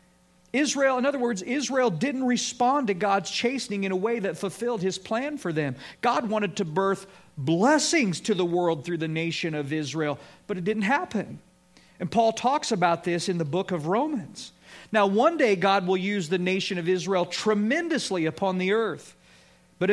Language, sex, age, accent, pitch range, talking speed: English, male, 50-69, American, 155-215 Hz, 185 wpm